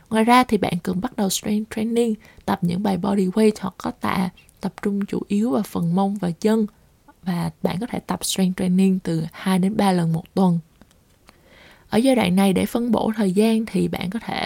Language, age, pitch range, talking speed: Vietnamese, 20-39, 180-225 Hz, 220 wpm